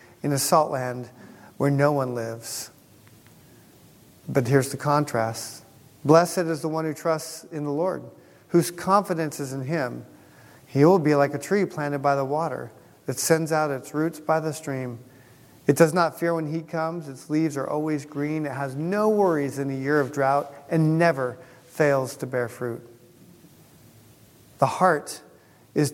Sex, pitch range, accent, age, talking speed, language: male, 130-160 Hz, American, 40-59, 170 wpm, English